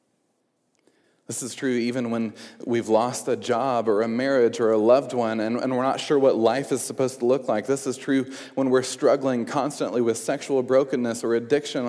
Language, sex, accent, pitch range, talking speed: English, male, American, 115-145 Hz, 200 wpm